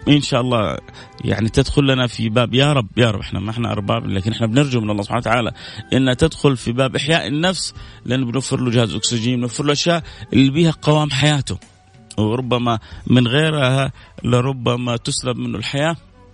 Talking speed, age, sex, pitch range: 175 wpm, 30-49, male, 110-135 Hz